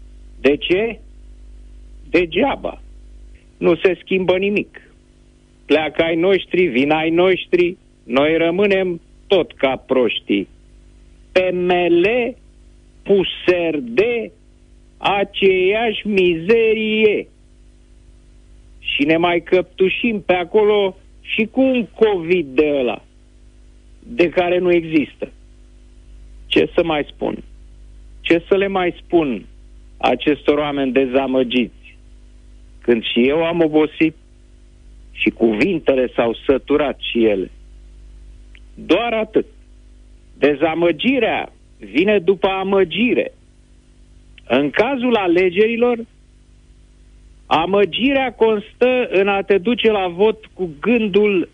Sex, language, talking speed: male, Romanian, 95 wpm